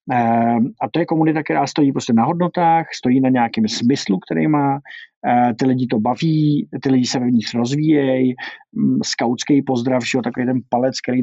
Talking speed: 180 wpm